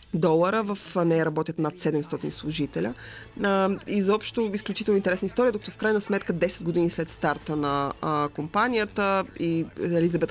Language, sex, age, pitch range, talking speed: Bulgarian, female, 20-39, 155-190 Hz, 135 wpm